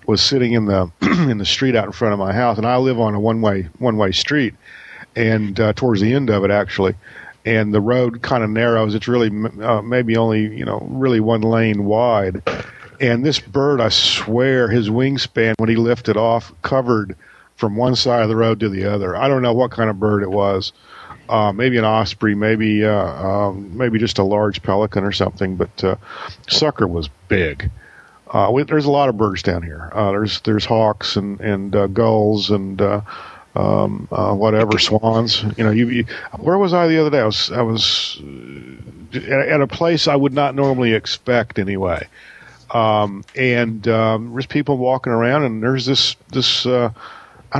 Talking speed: 195 wpm